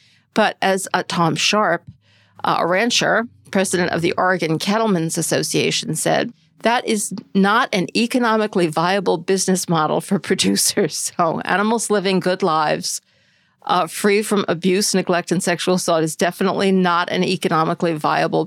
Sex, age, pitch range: female, 50-69, 180-235 Hz